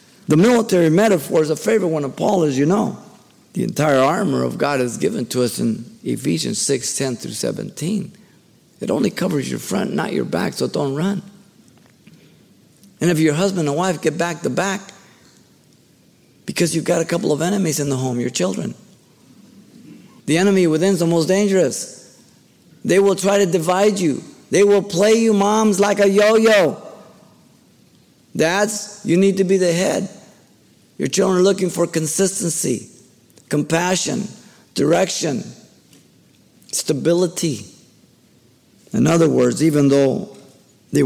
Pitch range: 135-195 Hz